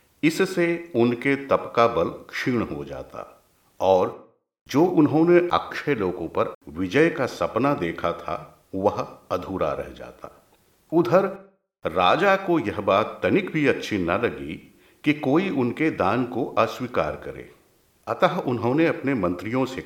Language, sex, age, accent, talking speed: Hindi, male, 50-69, native, 135 wpm